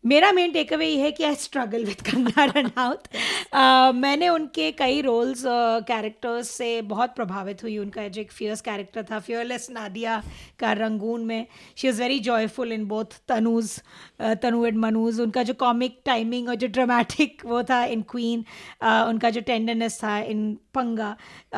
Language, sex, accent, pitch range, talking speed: Hindi, female, native, 225-270 Hz, 170 wpm